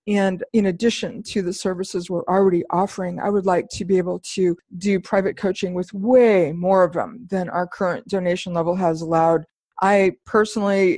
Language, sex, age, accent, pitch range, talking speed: English, female, 50-69, American, 175-195 Hz, 180 wpm